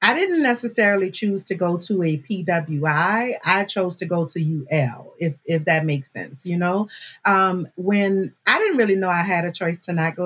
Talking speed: 205 wpm